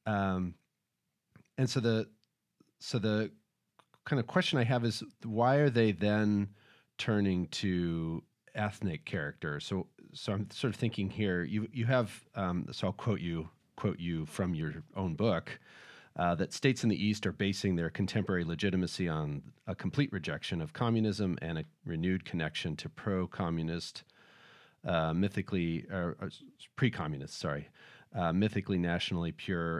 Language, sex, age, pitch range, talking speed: English, male, 30-49, 85-110 Hz, 150 wpm